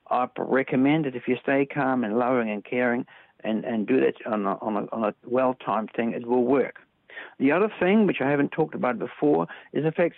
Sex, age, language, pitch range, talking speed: male, 60-79, English, 120-155 Hz, 225 wpm